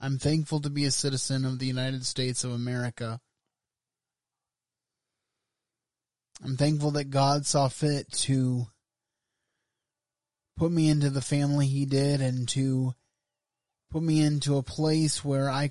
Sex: male